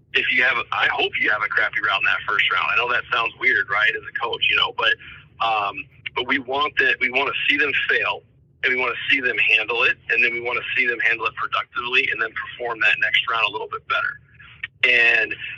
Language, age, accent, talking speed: English, 40-59, American, 255 wpm